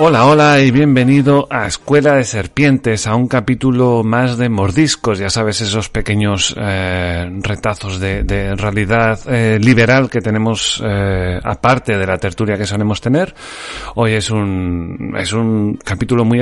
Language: Spanish